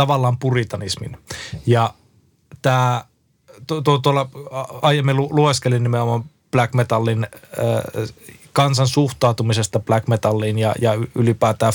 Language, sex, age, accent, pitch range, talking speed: Finnish, male, 20-39, native, 110-130 Hz, 85 wpm